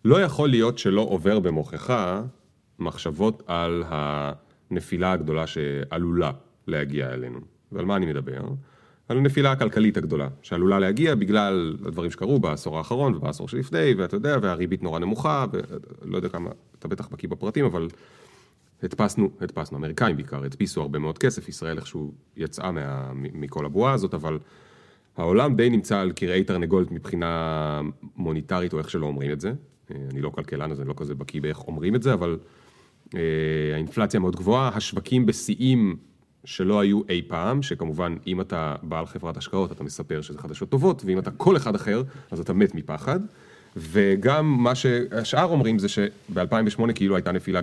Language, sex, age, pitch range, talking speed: Hebrew, male, 30-49, 75-120 Hz, 160 wpm